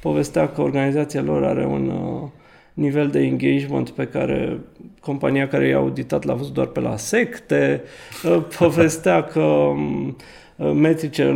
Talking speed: 125 wpm